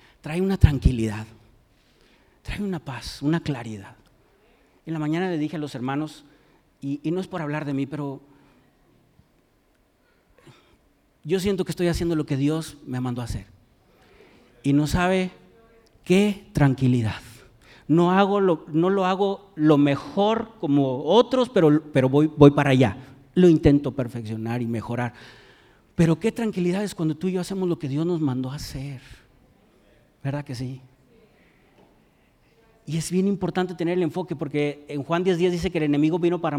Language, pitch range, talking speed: Spanish, 135-180 Hz, 160 wpm